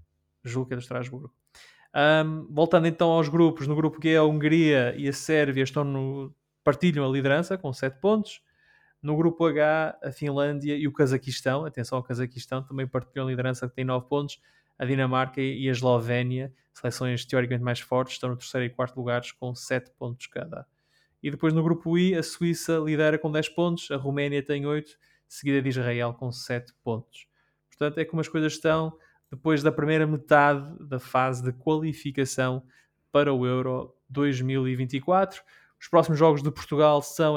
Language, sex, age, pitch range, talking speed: Portuguese, male, 20-39, 130-155 Hz, 175 wpm